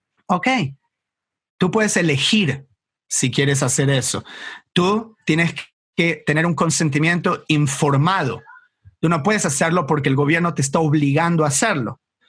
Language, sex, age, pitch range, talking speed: English, male, 30-49, 155-195 Hz, 130 wpm